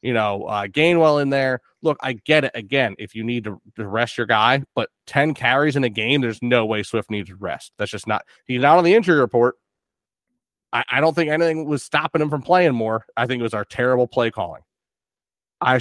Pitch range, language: 115-150 Hz, English